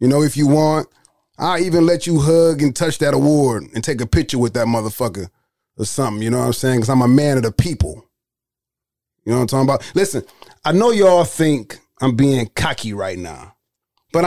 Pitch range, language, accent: 115-155 Hz, English, American